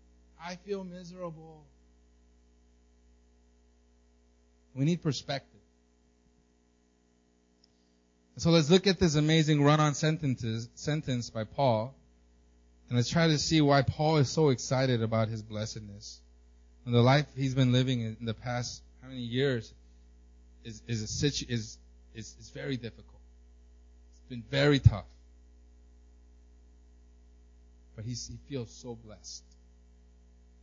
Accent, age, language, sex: American, 30-49, English, male